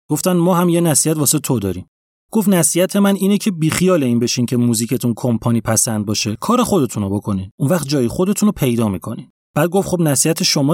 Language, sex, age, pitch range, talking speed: Persian, male, 30-49, 120-170 Hz, 205 wpm